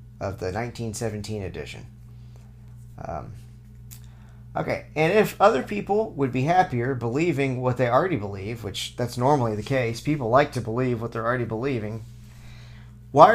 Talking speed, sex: 145 wpm, male